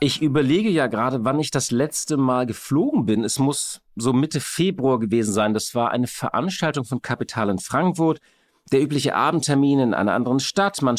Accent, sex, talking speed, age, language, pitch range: German, male, 185 wpm, 50-69, German, 125-165 Hz